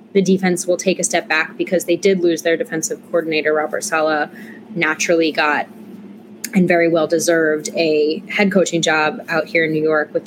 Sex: female